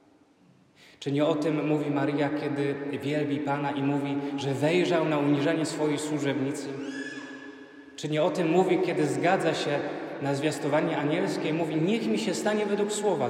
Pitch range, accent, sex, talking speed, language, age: 150-185 Hz, native, male, 160 wpm, Polish, 30-49